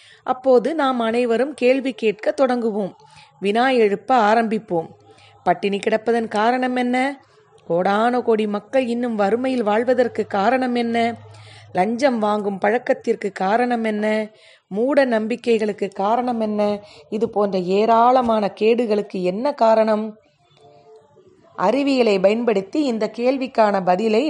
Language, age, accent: Tamil, 30-49, native